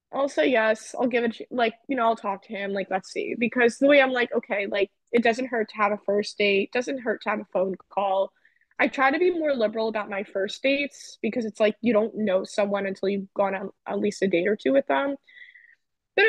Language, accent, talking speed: English, American, 250 wpm